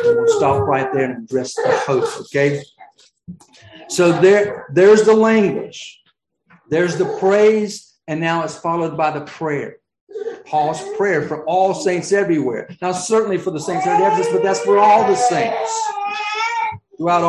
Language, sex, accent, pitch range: English, male, American, 155-230 Hz